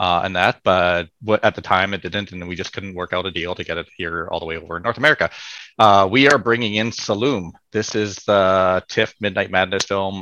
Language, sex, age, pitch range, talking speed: English, male, 30-49, 95-110 Hz, 240 wpm